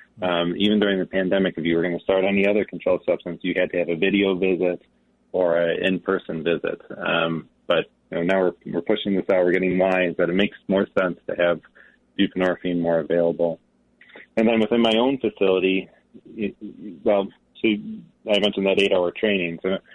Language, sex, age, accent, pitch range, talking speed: English, male, 30-49, American, 85-100 Hz, 190 wpm